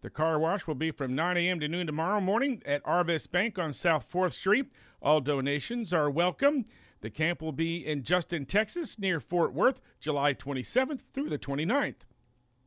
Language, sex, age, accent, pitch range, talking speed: English, male, 50-69, American, 150-200 Hz, 180 wpm